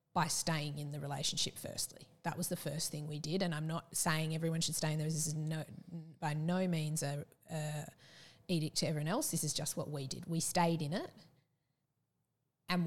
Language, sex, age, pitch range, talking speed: English, female, 30-49, 155-180 Hz, 210 wpm